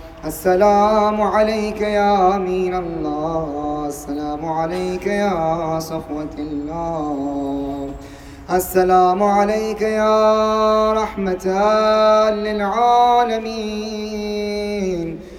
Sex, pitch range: male, 160-210 Hz